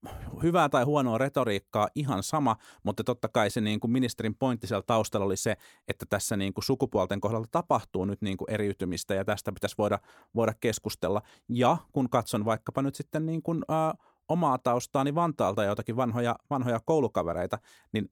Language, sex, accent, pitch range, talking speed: Finnish, male, native, 100-130 Hz, 170 wpm